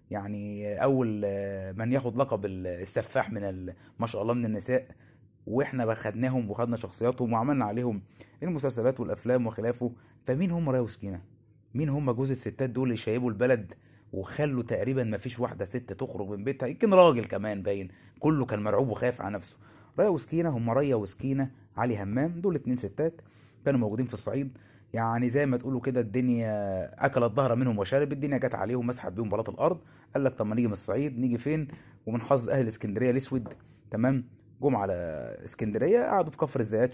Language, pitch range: Arabic, 110-135 Hz